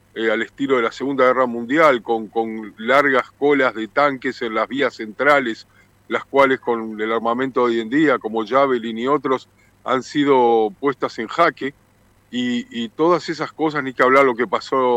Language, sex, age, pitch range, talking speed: Spanish, male, 50-69, 120-150 Hz, 185 wpm